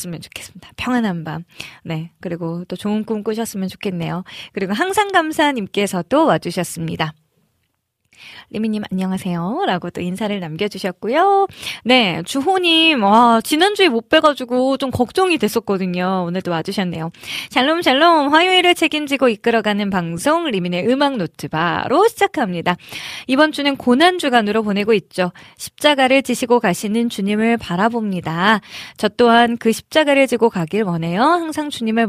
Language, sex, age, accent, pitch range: Korean, female, 20-39, native, 180-250 Hz